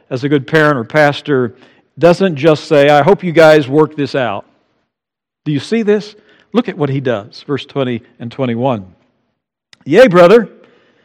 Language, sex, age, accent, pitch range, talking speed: English, male, 60-79, American, 130-170 Hz, 170 wpm